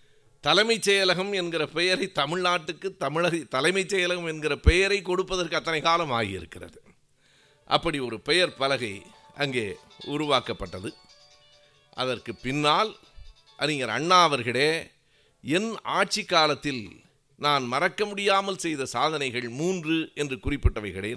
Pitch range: 130-180 Hz